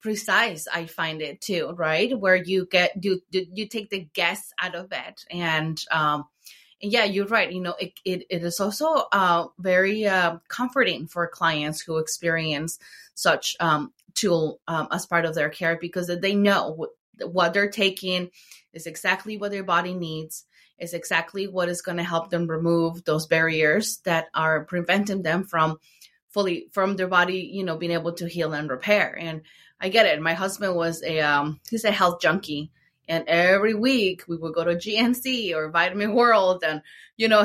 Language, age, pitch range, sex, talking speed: English, 20-39, 165-200 Hz, female, 185 wpm